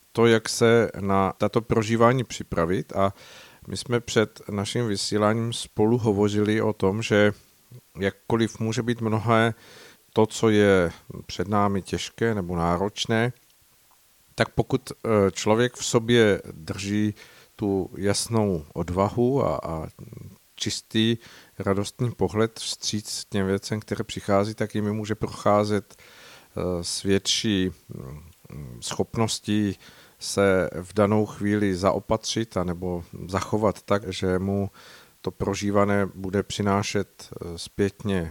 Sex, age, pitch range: male, 50-69, 95-115 Hz